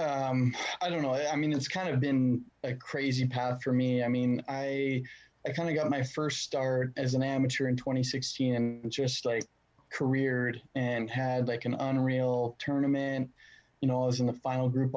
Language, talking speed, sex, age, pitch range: English, 195 wpm, male, 20-39, 125-140 Hz